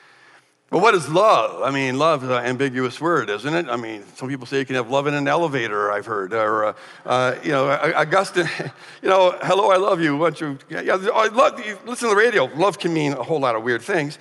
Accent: American